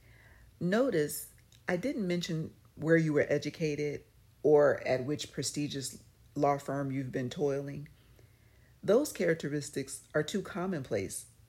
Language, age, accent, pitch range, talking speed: English, 40-59, American, 115-165 Hz, 115 wpm